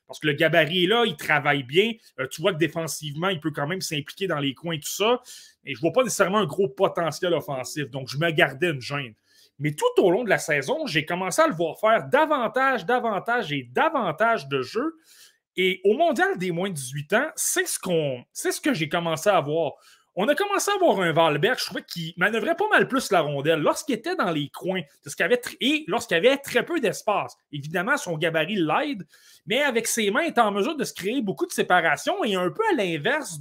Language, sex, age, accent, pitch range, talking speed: French, male, 30-49, Canadian, 160-250 Hz, 235 wpm